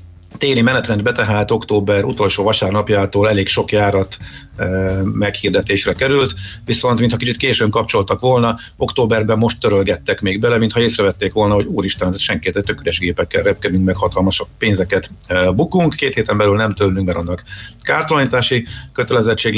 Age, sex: 50-69, male